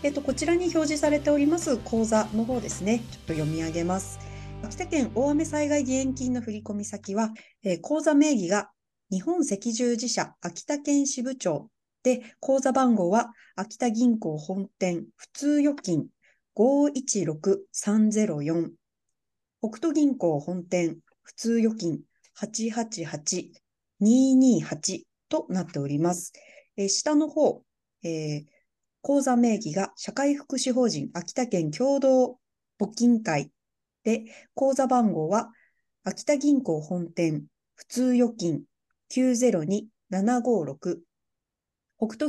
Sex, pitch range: female, 185-270 Hz